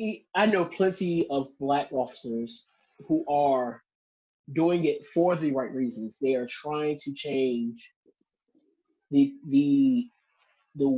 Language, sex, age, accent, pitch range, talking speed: English, male, 20-39, American, 140-185 Hz, 120 wpm